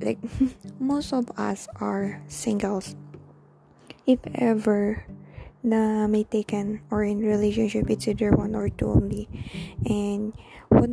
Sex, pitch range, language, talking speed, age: female, 200-230 Hz, Filipino, 120 wpm, 20-39